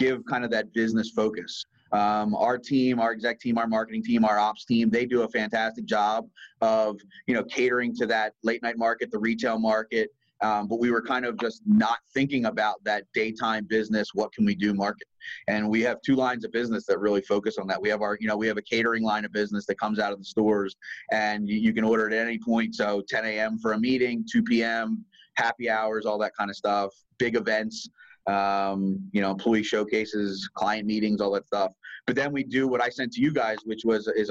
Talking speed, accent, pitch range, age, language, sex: 225 wpm, American, 105-120 Hz, 30-49, English, male